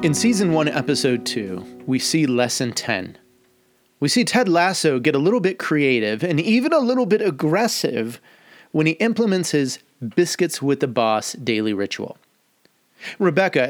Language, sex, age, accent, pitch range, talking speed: English, male, 30-49, American, 125-170 Hz, 155 wpm